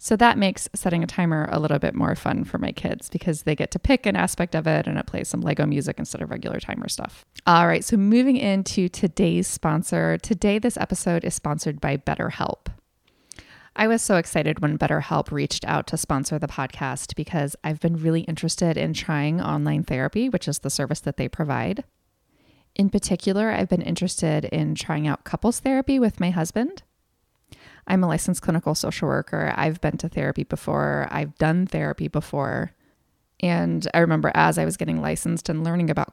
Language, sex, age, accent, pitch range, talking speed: English, female, 20-39, American, 150-185 Hz, 190 wpm